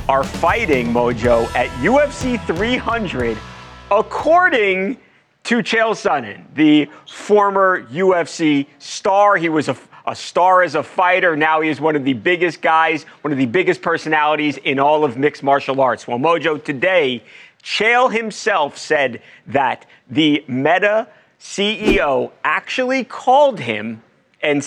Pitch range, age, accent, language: 135-185 Hz, 40-59, American, English